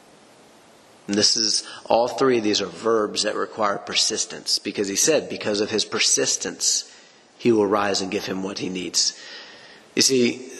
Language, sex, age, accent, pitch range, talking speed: English, male, 40-59, American, 105-125 Hz, 170 wpm